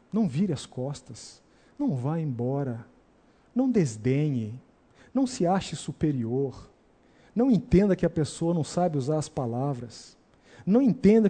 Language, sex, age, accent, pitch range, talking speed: Portuguese, male, 50-69, Brazilian, 130-170 Hz, 135 wpm